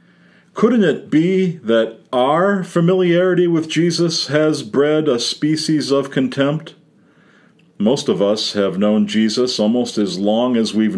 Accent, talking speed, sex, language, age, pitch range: American, 135 wpm, male, English, 50-69, 110-165 Hz